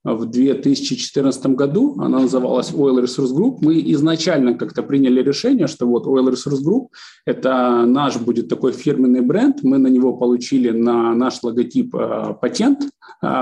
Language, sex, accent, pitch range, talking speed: Russian, male, native, 125-160 Hz, 155 wpm